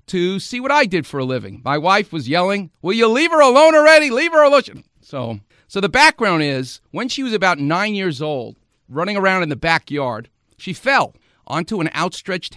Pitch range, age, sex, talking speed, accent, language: 135-200 Hz, 50-69, male, 205 wpm, American, English